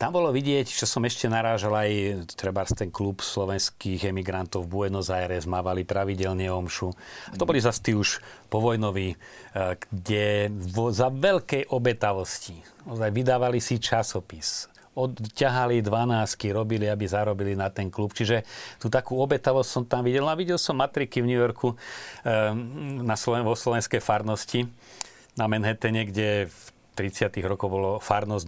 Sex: male